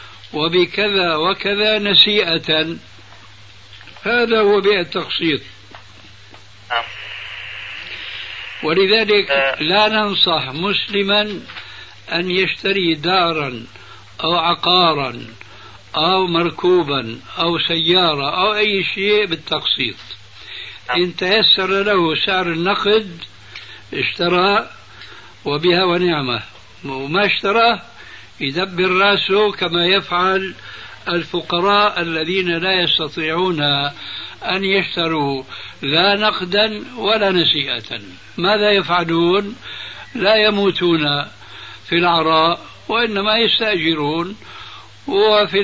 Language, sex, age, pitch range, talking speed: Arabic, male, 60-79, 140-195 Hz, 75 wpm